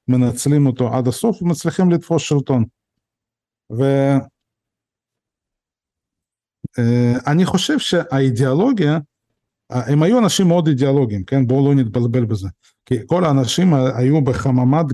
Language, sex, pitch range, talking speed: Hebrew, male, 125-155 Hz, 100 wpm